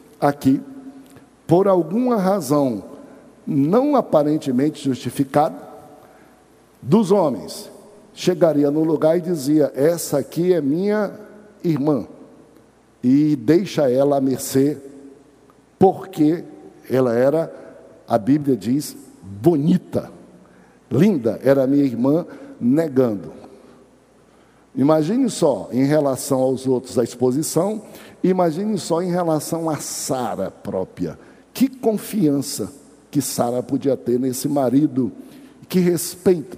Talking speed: 100 wpm